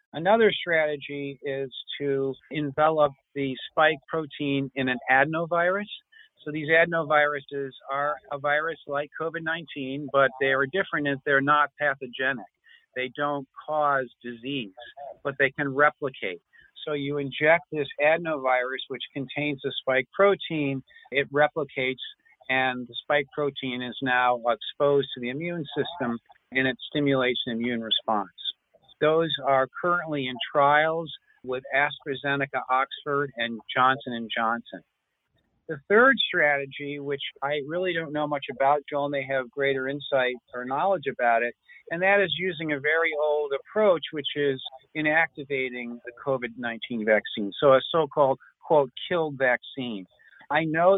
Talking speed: 135 wpm